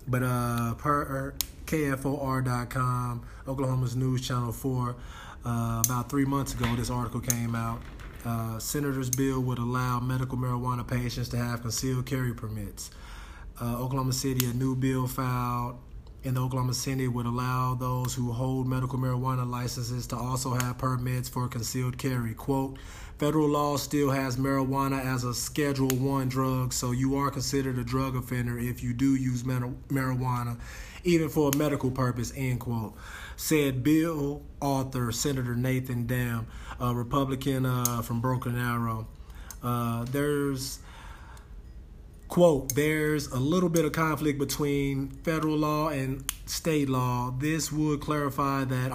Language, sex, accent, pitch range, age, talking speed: English, male, American, 120-135 Hz, 30-49, 145 wpm